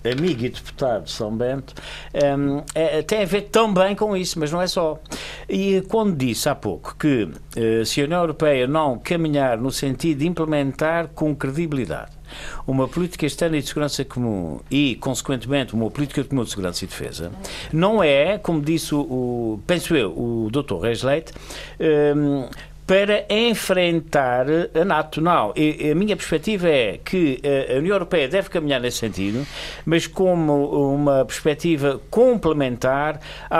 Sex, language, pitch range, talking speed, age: male, Portuguese, 130-165 Hz, 165 wpm, 60-79